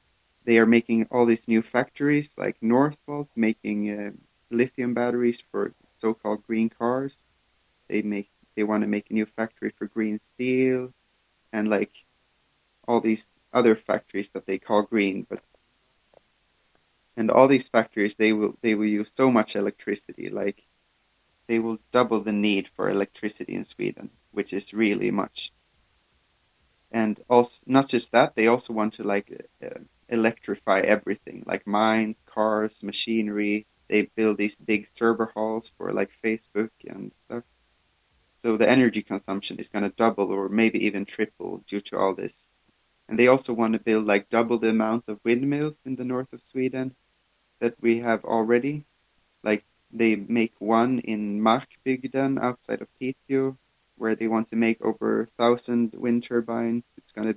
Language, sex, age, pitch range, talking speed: German, male, 30-49, 105-120 Hz, 160 wpm